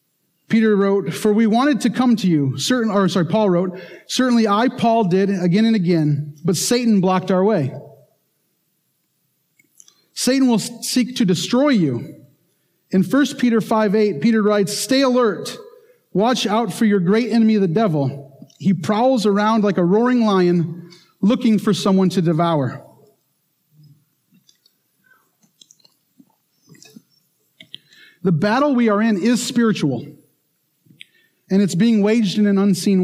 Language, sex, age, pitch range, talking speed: English, male, 40-59, 170-225 Hz, 135 wpm